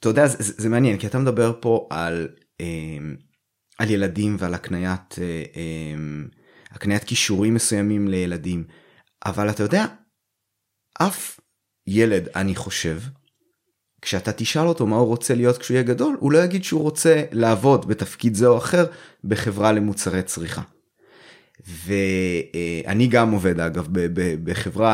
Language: Hebrew